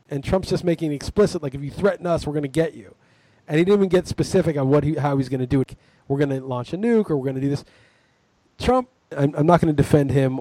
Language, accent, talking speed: English, American, 295 wpm